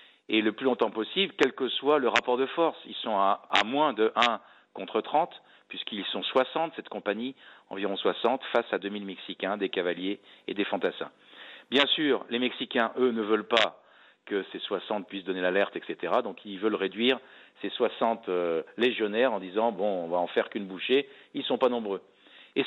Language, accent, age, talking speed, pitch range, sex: French, French, 50-69, 205 wpm, 105-135 Hz, male